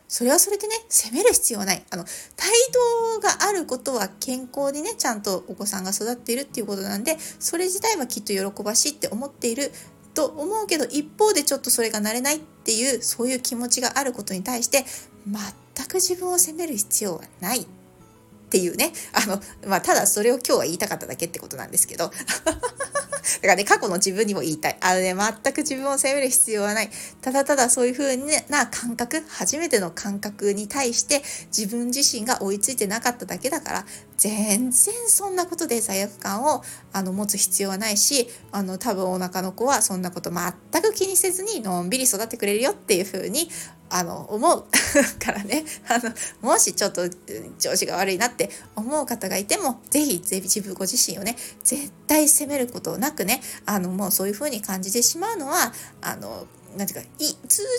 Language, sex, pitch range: Japanese, female, 205-290 Hz